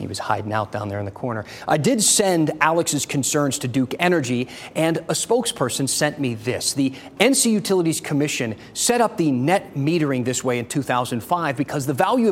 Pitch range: 130-175 Hz